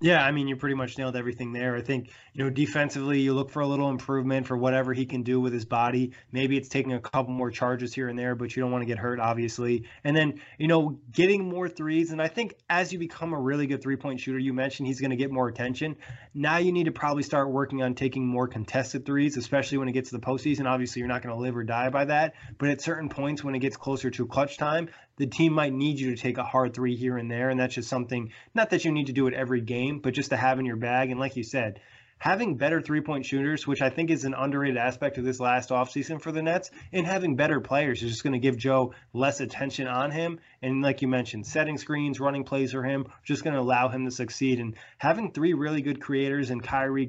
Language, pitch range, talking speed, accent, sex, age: English, 125-145 Hz, 260 wpm, American, male, 20-39